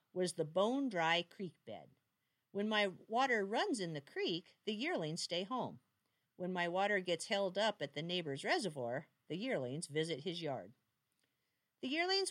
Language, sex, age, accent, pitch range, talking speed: English, female, 50-69, American, 140-205 Hz, 160 wpm